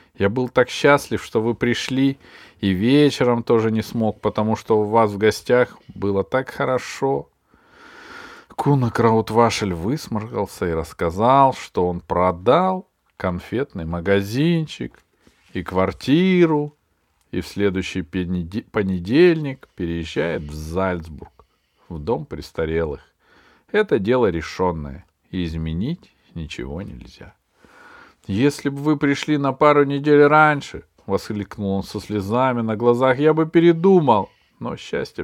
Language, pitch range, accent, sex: Russian, 100-145 Hz, native, male